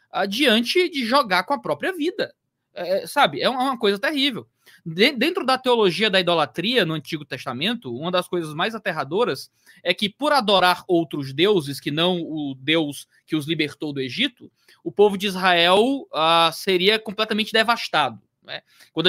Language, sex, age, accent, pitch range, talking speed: Portuguese, male, 20-39, Brazilian, 150-220 Hz, 165 wpm